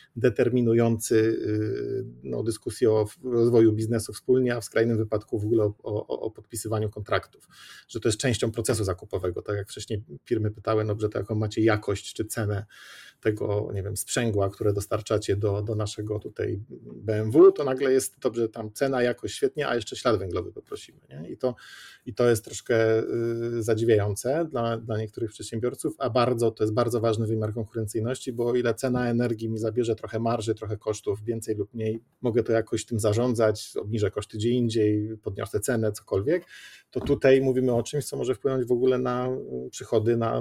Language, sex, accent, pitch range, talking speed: Polish, male, native, 110-125 Hz, 180 wpm